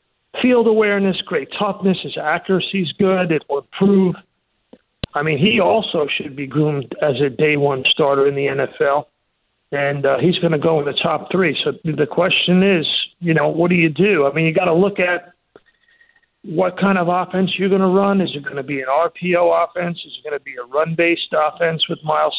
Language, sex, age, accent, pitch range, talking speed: English, male, 50-69, American, 150-180 Hz, 210 wpm